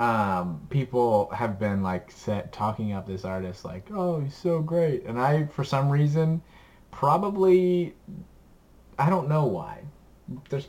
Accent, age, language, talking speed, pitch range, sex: American, 20-39, English, 145 wpm, 100-140 Hz, male